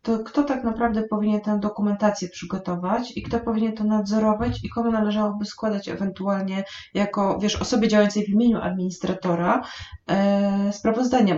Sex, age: female, 30-49